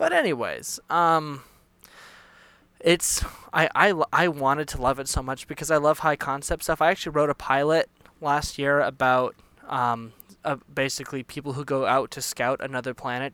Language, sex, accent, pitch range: English, male, American, 125-150 Hz